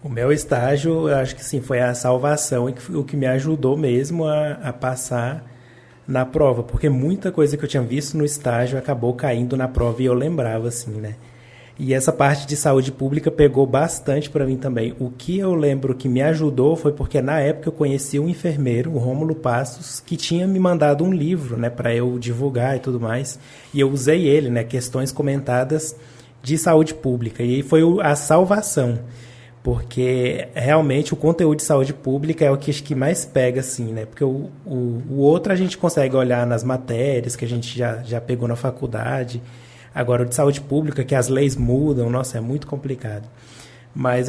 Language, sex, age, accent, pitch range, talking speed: Portuguese, male, 20-39, Brazilian, 125-150 Hz, 195 wpm